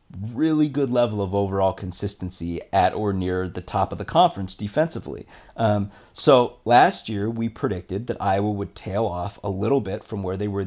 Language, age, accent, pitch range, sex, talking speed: English, 30-49, American, 100-125 Hz, male, 185 wpm